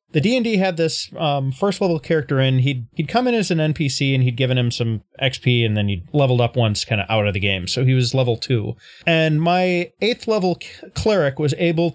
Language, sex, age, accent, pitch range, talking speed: English, male, 30-49, American, 130-205 Hz, 235 wpm